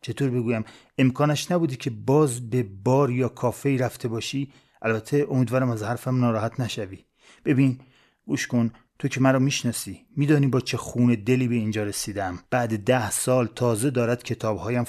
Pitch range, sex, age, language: 120-140 Hz, male, 30-49, Persian